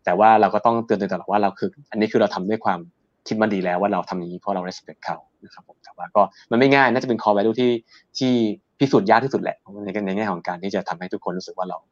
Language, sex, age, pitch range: Thai, male, 20-39, 95-115 Hz